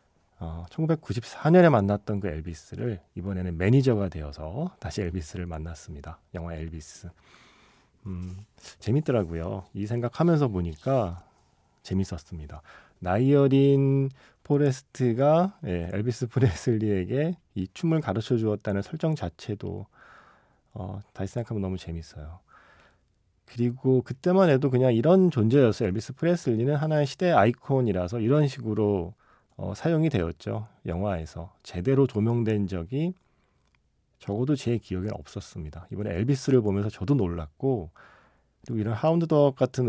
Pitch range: 95-140 Hz